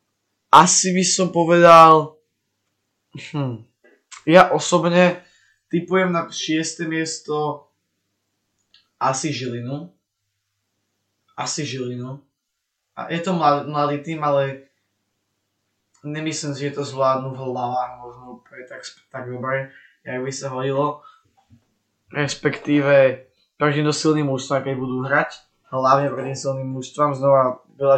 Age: 20-39